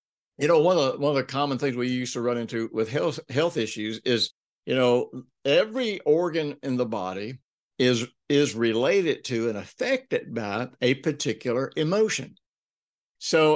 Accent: American